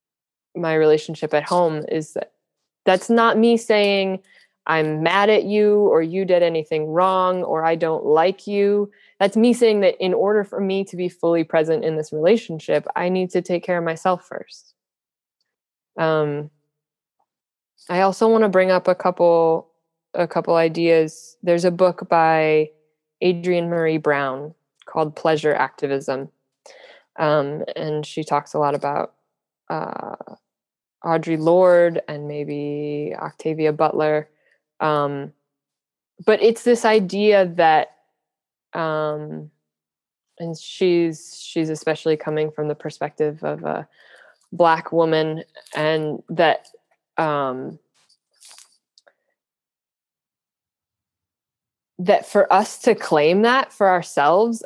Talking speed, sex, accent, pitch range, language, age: 125 wpm, female, American, 150-185 Hz, English, 20-39